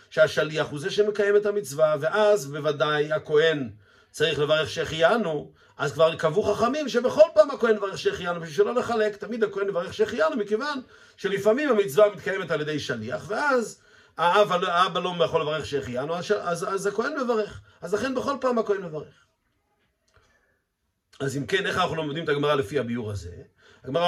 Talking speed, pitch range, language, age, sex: 160 wpm, 140-205 Hz, Hebrew, 50-69, male